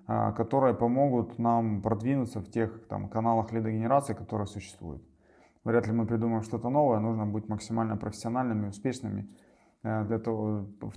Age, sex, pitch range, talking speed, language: 20-39, male, 105-125 Hz, 120 wpm, Russian